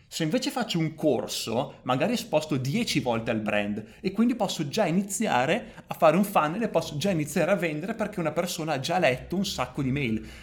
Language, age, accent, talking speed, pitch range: Italian, 30-49, native, 205 wpm, 140-190 Hz